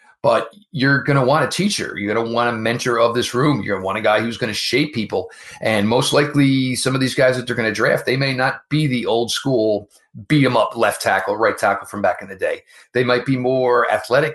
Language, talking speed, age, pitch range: English, 265 wpm, 40-59, 110-140 Hz